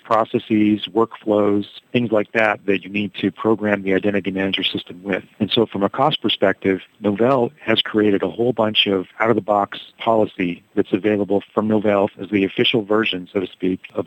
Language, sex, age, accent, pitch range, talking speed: English, male, 40-59, American, 95-110 Hz, 185 wpm